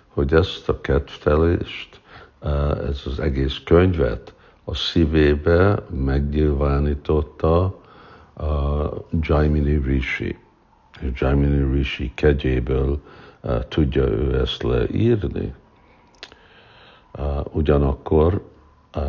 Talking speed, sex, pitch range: 70 wpm, male, 70-80 Hz